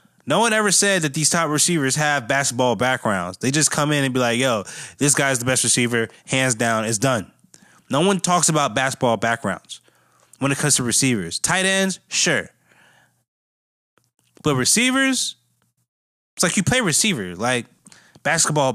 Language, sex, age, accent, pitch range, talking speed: English, male, 20-39, American, 120-150 Hz, 165 wpm